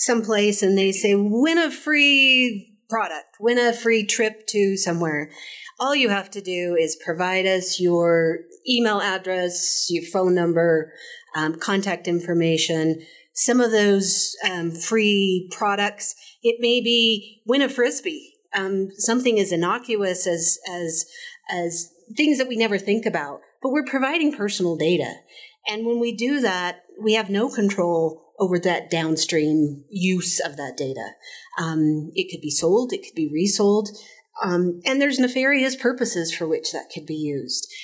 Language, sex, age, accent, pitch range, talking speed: English, female, 40-59, American, 170-235 Hz, 155 wpm